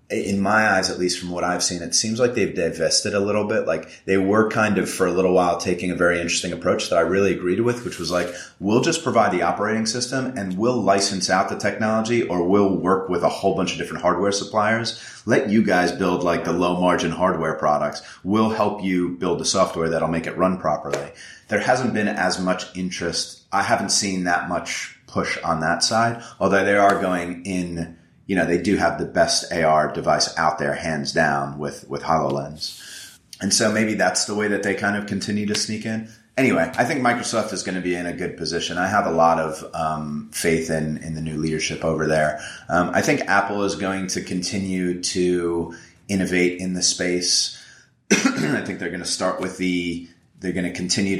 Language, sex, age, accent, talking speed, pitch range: English, male, 30-49, American, 215 wpm, 85-100 Hz